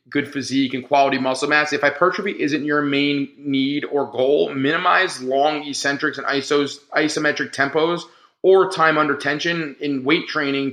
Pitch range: 140-165 Hz